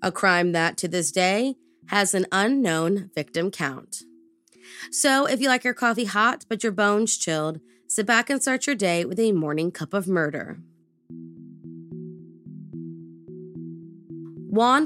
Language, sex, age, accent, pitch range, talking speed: English, female, 20-39, American, 165-230 Hz, 140 wpm